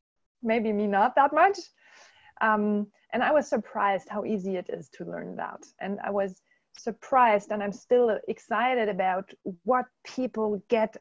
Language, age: English, 30-49